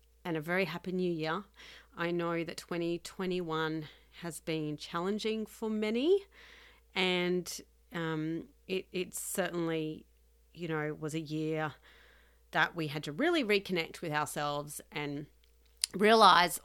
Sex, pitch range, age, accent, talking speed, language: female, 155-195 Hz, 40-59, Australian, 125 wpm, English